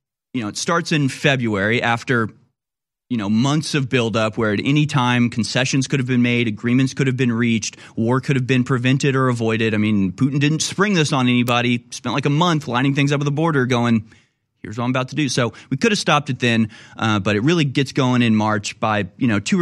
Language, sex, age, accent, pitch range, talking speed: English, male, 30-49, American, 110-135 Hz, 235 wpm